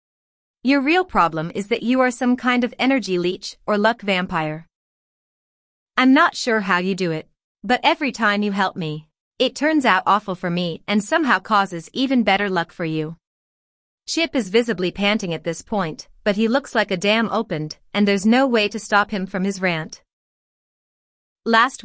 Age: 30-49